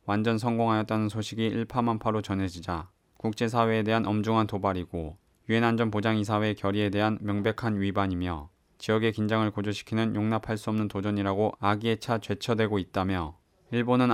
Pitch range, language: 100-115 Hz, Korean